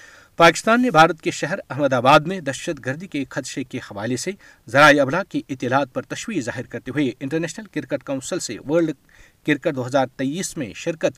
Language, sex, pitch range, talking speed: Urdu, male, 125-160 Hz, 175 wpm